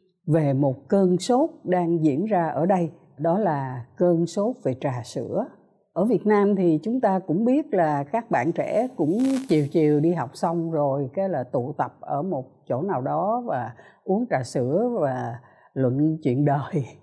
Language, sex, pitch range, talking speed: Vietnamese, female, 140-215 Hz, 185 wpm